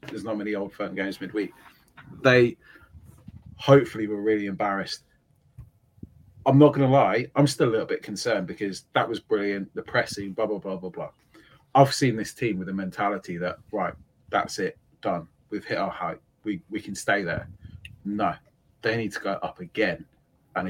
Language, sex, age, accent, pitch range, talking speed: English, male, 30-49, British, 100-130 Hz, 180 wpm